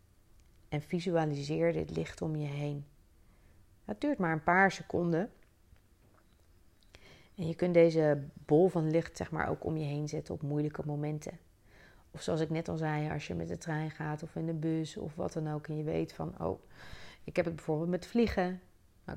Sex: female